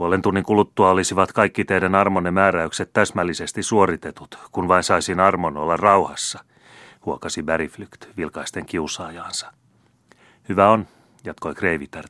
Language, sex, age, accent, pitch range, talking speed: Finnish, male, 30-49, native, 80-100 Hz, 115 wpm